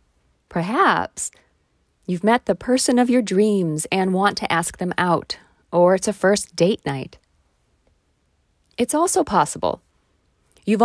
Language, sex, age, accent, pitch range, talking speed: English, female, 40-59, American, 155-230 Hz, 135 wpm